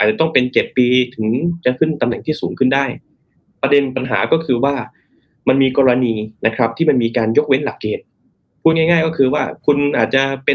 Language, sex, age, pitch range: Thai, male, 20-39, 120-160 Hz